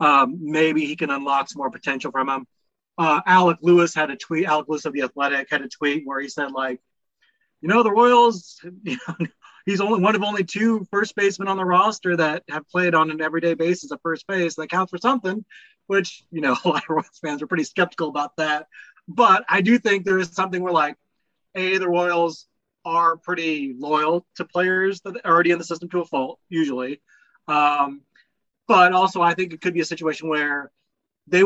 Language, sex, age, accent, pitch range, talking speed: English, male, 30-49, American, 150-185 Hz, 210 wpm